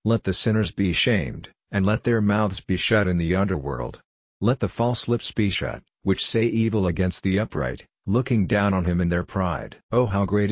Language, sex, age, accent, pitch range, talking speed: English, male, 50-69, American, 90-105 Hz, 205 wpm